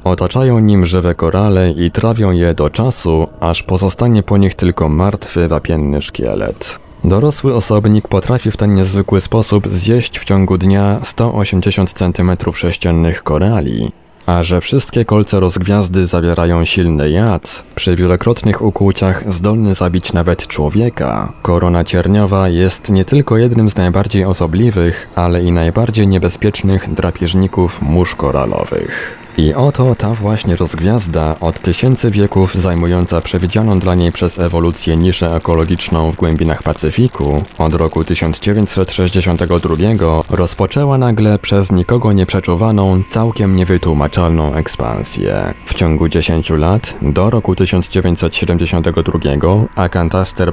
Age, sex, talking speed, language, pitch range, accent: 20-39, male, 120 wpm, Polish, 85-105 Hz, native